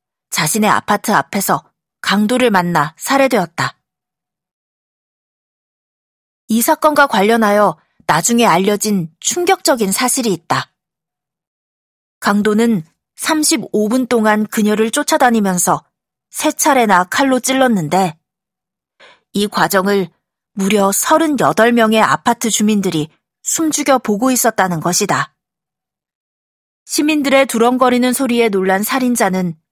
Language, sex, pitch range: Korean, female, 190-250 Hz